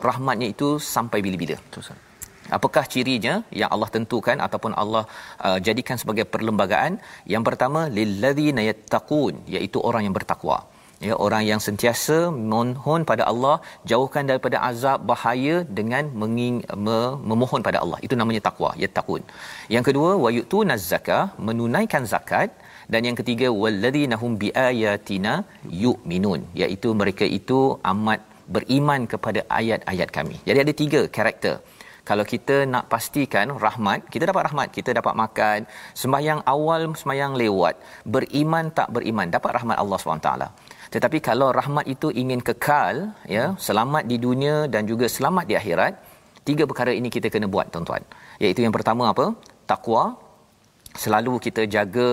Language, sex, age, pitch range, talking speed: Malayalam, male, 40-59, 110-140 Hz, 145 wpm